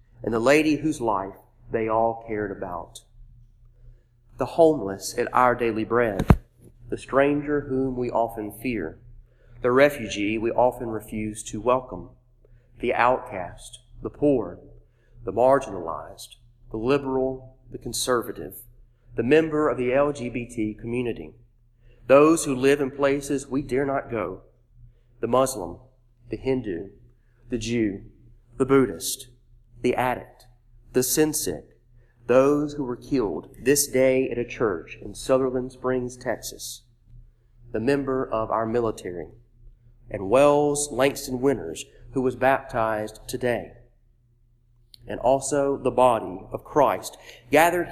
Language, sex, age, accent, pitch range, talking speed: English, male, 40-59, American, 115-130 Hz, 125 wpm